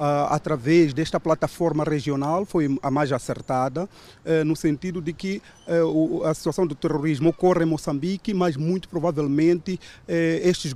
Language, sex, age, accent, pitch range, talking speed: Portuguese, male, 40-59, Brazilian, 150-180 Hz, 130 wpm